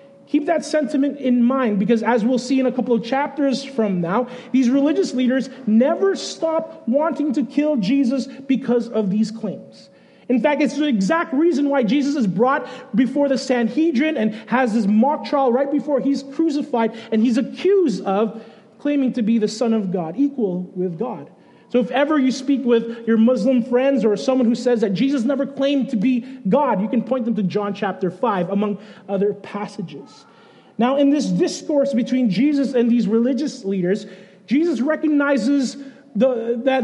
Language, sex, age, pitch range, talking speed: English, male, 30-49, 230-285 Hz, 180 wpm